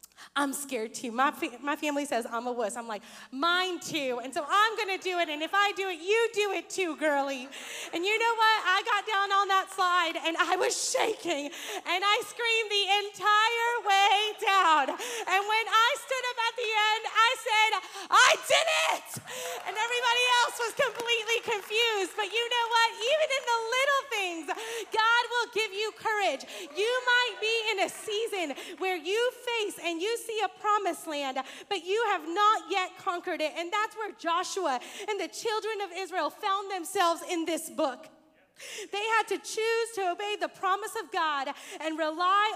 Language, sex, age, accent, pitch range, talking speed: English, female, 30-49, American, 335-430 Hz, 190 wpm